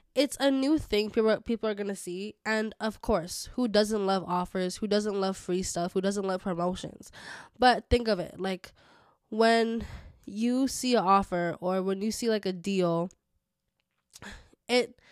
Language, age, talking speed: English, 10-29, 175 wpm